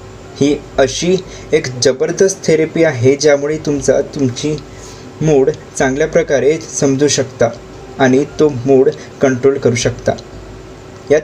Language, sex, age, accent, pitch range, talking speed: Marathi, male, 20-39, native, 130-150 Hz, 110 wpm